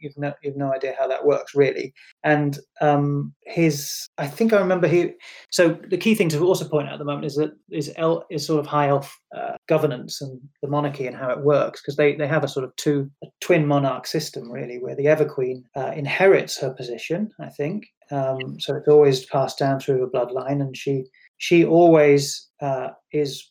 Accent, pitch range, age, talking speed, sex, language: British, 135-155 Hz, 30-49, 210 wpm, male, English